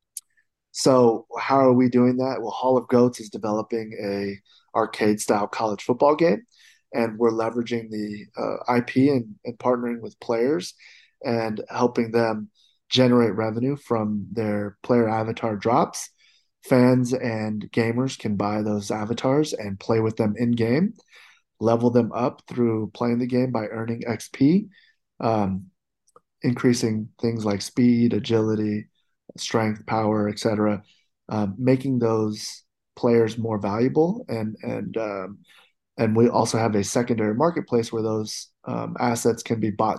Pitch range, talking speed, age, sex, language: 110-125 Hz, 140 wpm, 30-49, male, English